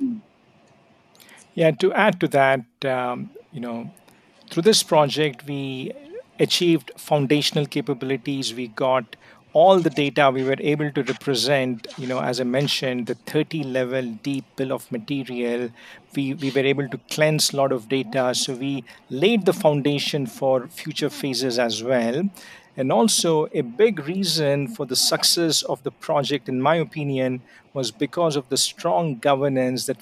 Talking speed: 155 wpm